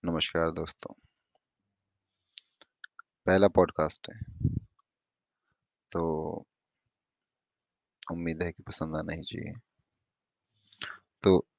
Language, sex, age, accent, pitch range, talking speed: Hindi, male, 30-49, native, 85-100 Hz, 70 wpm